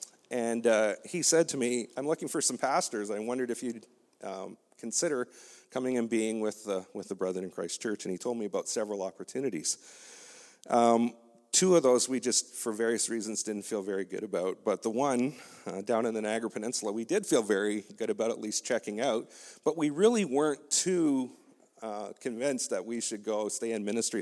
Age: 40-59